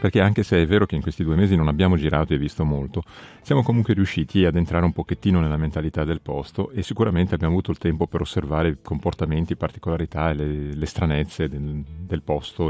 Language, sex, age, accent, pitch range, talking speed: Italian, male, 40-59, native, 80-100 Hz, 215 wpm